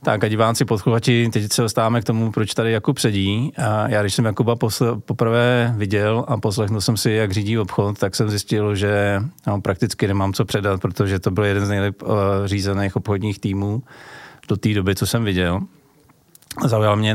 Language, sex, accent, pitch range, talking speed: Czech, male, native, 100-115 Hz, 190 wpm